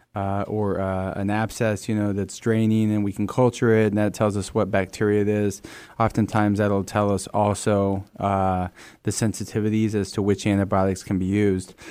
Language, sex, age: English, male, 20-39